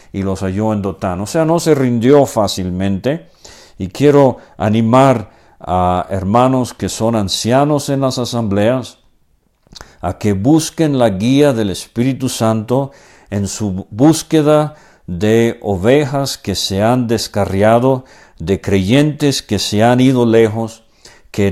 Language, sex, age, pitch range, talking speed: English, male, 50-69, 95-120 Hz, 130 wpm